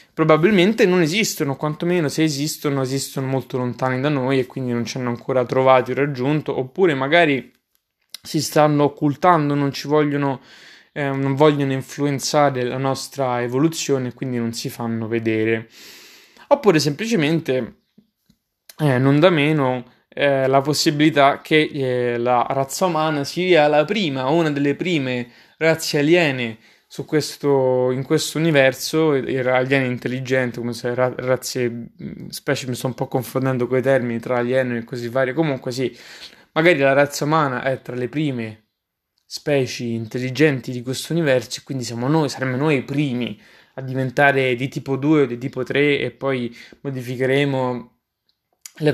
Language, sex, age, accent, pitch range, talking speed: Italian, male, 20-39, native, 125-150 Hz, 155 wpm